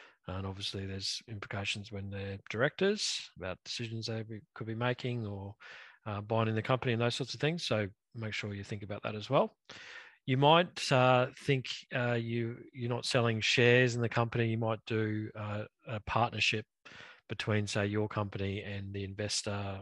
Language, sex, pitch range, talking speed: English, male, 100-120 Hz, 180 wpm